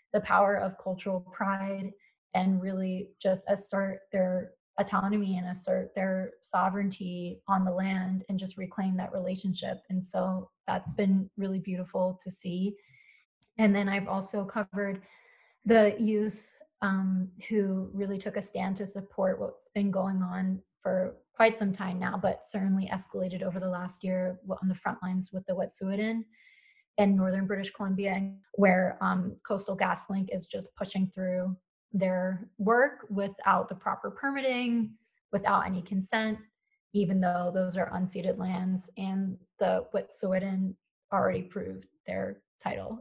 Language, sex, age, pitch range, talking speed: English, female, 20-39, 185-205 Hz, 145 wpm